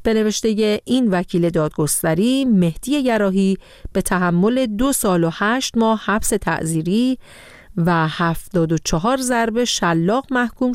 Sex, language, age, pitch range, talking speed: female, Persian, 40-59, 160-225 Hz, 130 wpm